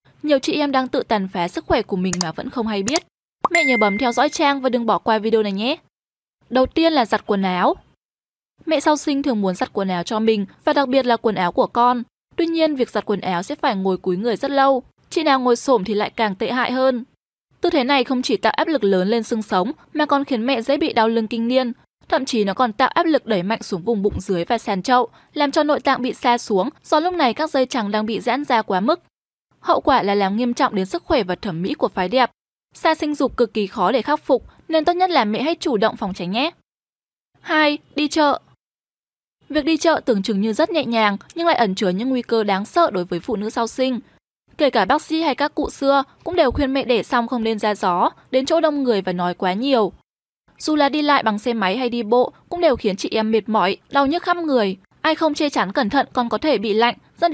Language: Vietnamese